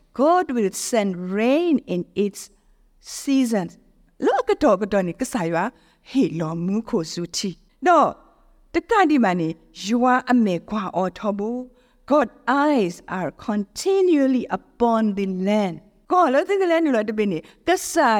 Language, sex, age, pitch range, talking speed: English, female, 50-69, 195-270 Hz, 135 wpm